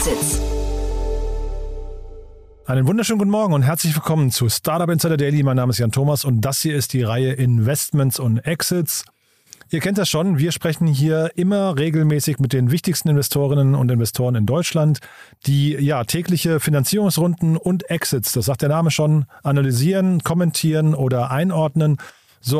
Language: German